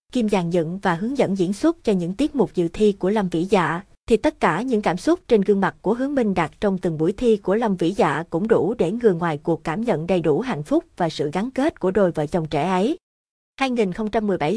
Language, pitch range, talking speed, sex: Vietnamese, 175-220 Hz, 255 wpm, female